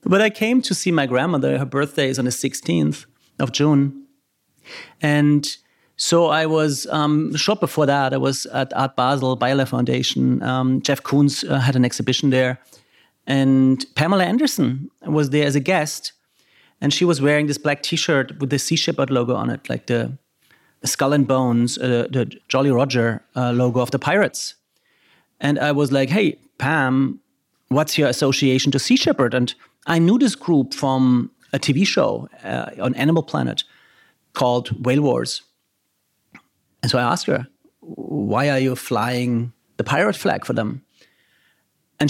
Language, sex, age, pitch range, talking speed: English, male, 40-59, 130-160 Hz, 170 wpm